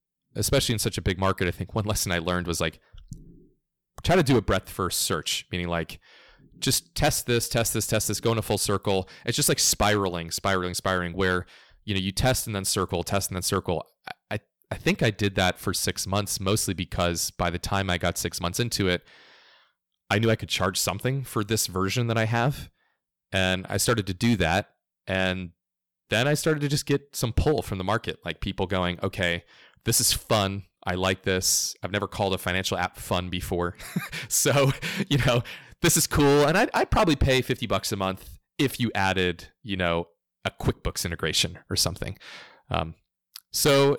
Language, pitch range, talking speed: English, 90-120 Hz, 200 wpm